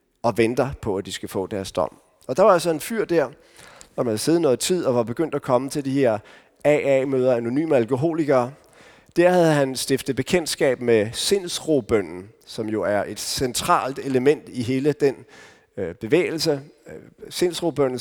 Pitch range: 125-155 Hz